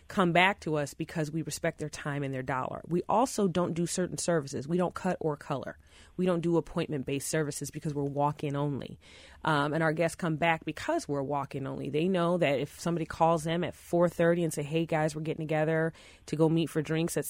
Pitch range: 150-175 Hz